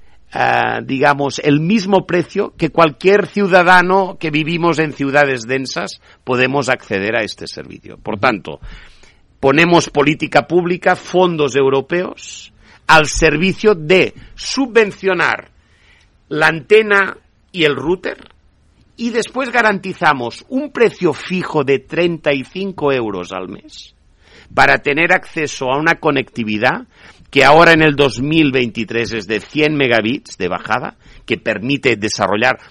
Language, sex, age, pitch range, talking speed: Spanish, male, 50-69, 115-180 Hz, 115 wpm